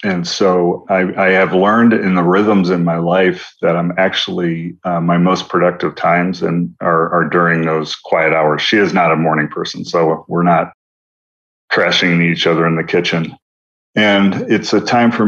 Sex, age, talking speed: male, 40-59, 185 wpm